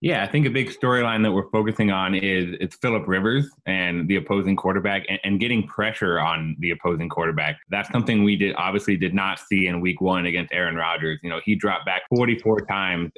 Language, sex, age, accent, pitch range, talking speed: English, male, 20-39, American, 95-115 Hz, 215 wpm